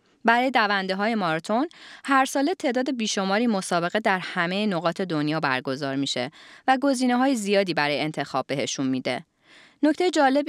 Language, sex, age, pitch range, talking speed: Persian, female, 20-39, 170-245 Hz, 145 wpm